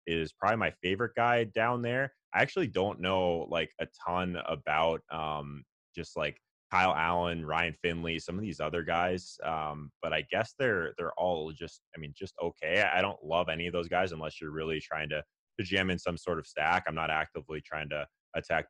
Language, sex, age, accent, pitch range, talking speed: English, male, 20-39, American, 75-90 Hz, 200 wpm